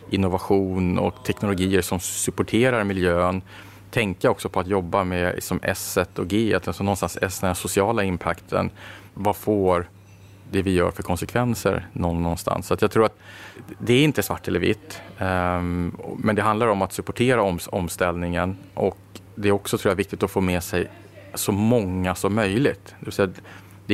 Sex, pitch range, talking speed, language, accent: male, 90-105 Hz, 170 wpm, Swedish, Norwegian